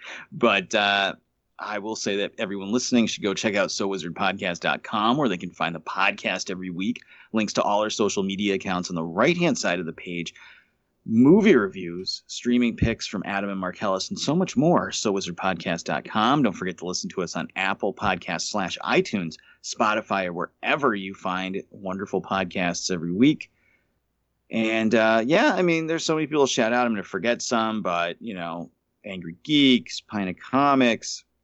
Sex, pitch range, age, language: male, 95-125 Hz, 30-49, English